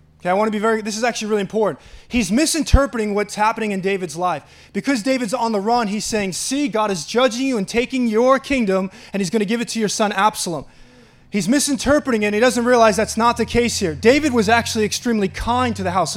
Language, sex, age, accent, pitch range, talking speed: English, male, 20-39, American, 195-240 Hz, 240 wpm